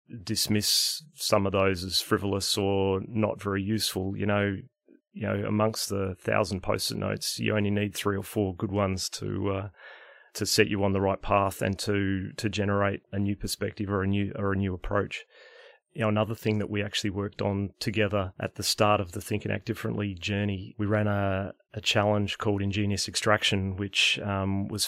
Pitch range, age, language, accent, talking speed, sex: 100-105 Hz, 30-49, English, Australian, 195 wpm, male